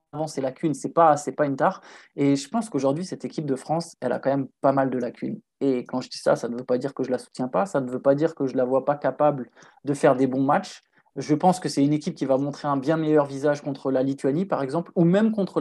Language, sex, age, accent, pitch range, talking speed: French, male, 20-39, French, 135-160 Hz, 310 wpm